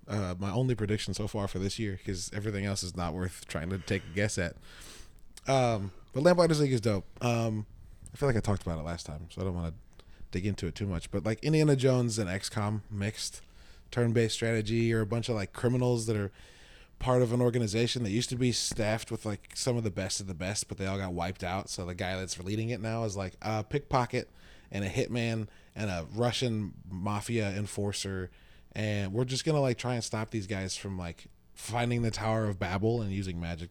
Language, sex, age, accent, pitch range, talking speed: English, male, 20-39, American, 95-125 Hz, 230 wpm